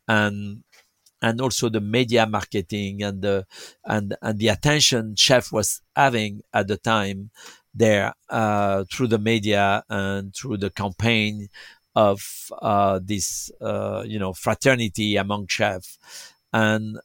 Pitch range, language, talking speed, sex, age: 100-115 Hz, English, 130 wpm, male, 50-69